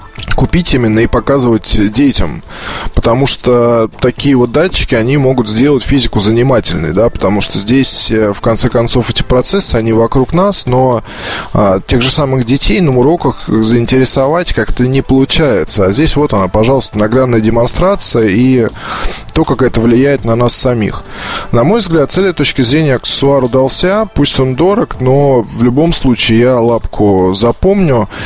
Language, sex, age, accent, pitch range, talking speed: Russian, male, 20-39, native, 110-140 Hz, 155 wpm